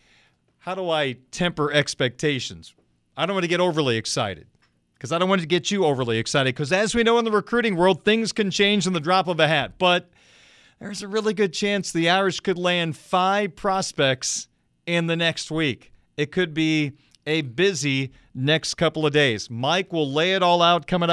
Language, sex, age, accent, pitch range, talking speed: English, male, 40-59, American, 155-190 Hz, 200 wpm